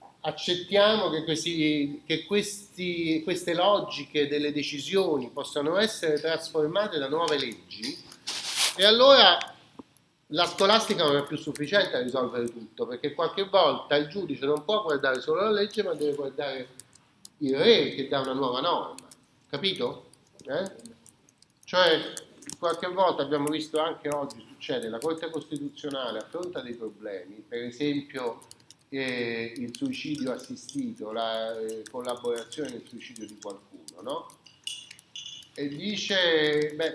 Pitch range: 135-190 Hz